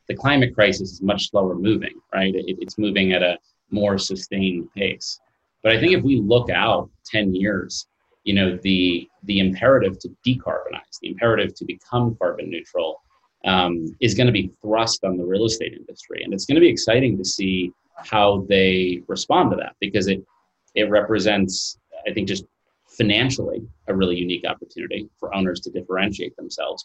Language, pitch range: English, 95-105 Hz